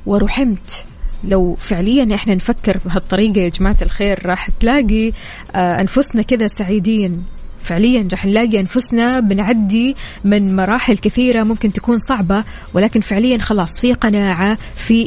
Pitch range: 200-240 Hz